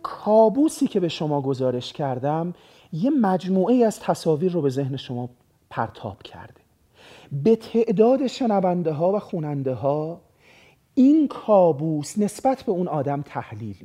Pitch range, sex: 140-215 Hz, male